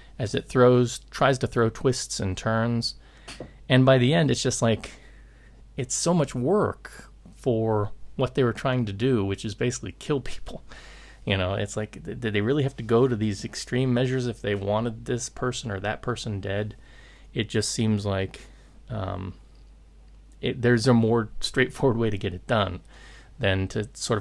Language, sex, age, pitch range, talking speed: English, male, 30-49, 105-130 Hz, 180 wpm